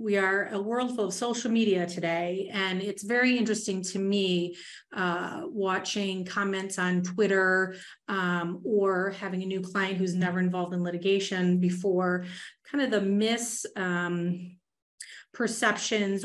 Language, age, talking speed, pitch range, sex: English, 30-49, 140 wpm, 180-210 Hz, female